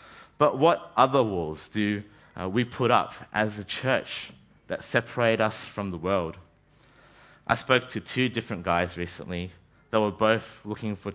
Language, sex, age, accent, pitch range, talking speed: English, male, 30-49, Australian, 100-125 Hz, 155 wpm